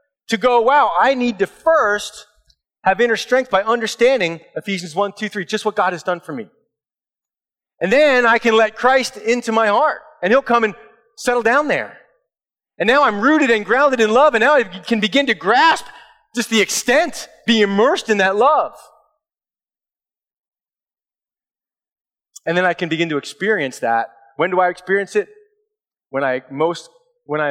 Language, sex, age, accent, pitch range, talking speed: English, male, 30-49, American, 140-225 Hz, 175 wpm